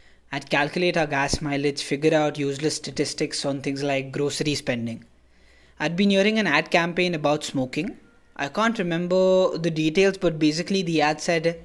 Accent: Indian